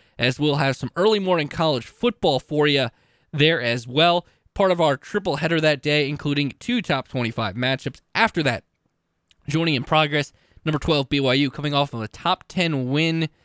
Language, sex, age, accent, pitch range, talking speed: English, male, 20-39, American, 130-170 Hz, 180 wpm